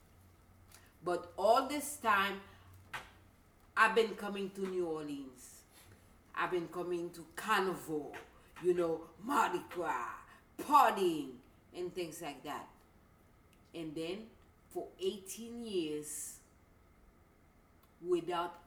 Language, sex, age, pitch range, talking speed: English, female, 40-59, 135-220 Hz, 95 wpm